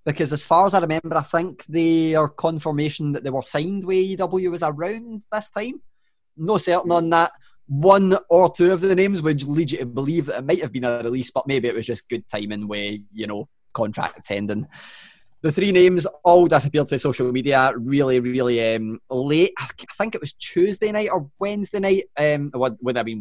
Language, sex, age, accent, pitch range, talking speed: English, male, 20-39, British, 120-165 Hz, 210 wpm